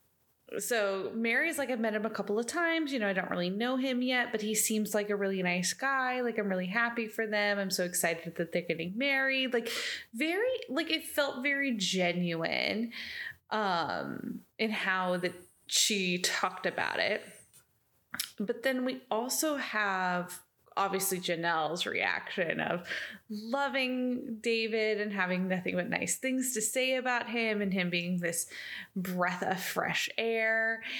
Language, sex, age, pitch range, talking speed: English, female, 20-39, 190-250 Hz, 160 wpm